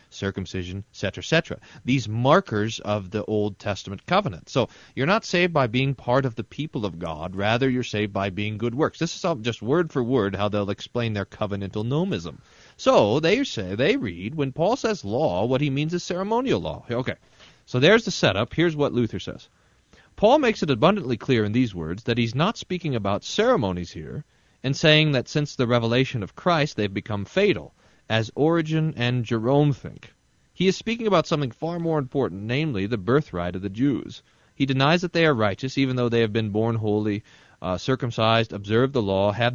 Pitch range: 105-145 Hz